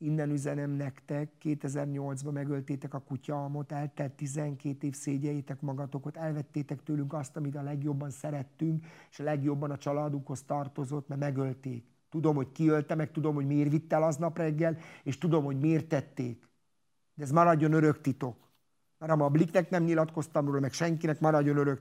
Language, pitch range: Hungarian, 140-160 Hz